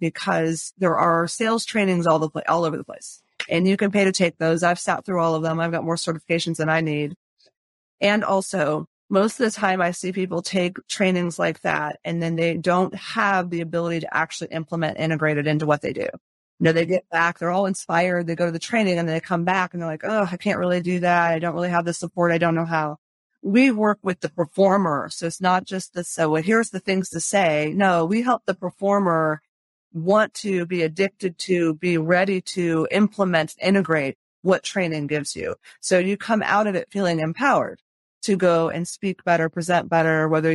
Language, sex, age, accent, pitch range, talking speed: English, female, 30-49, American, 160-195 Hz, 220 wpm